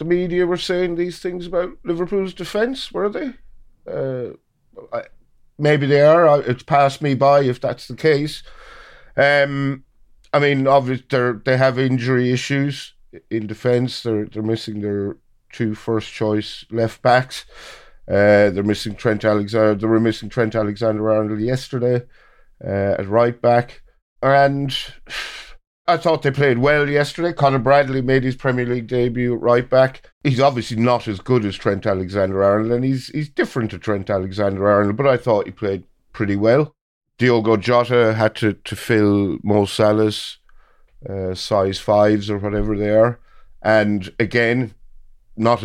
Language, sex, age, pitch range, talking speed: English, male, 50-69, 105-140 Hz, 155 wpm